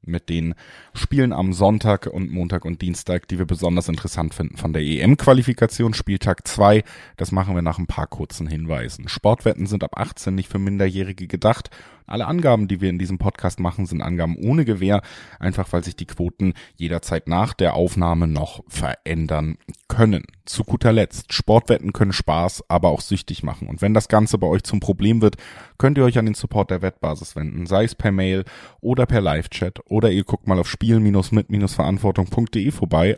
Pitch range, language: 90-115 Hz, German